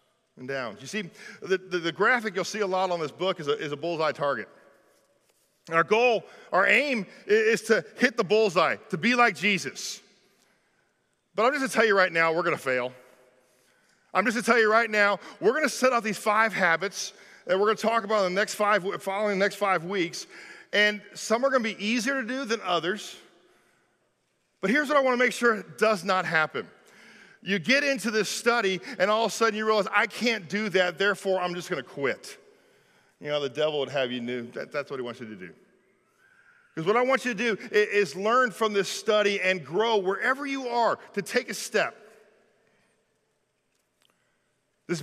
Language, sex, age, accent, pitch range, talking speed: English, male, 40-59, American, 185-230 Hz, 210 wpm